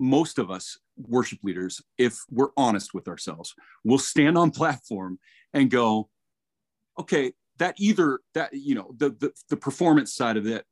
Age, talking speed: 40-59, 160 wpm